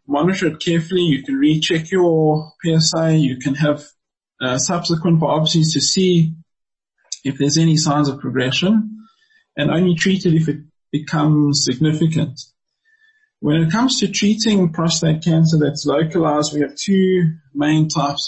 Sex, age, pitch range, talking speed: male, 20-39, 145-175 Hz, 145 wpm